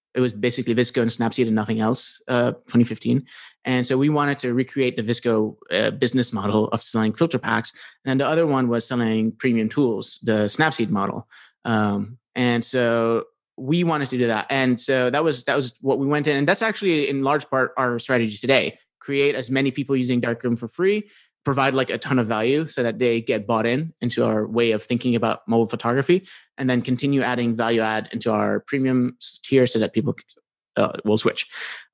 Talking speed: 205 wpm